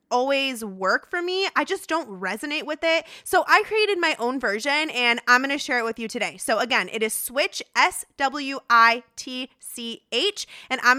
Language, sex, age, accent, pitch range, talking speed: English, female, 20-39, American, 225-310 Hz, 180 wpm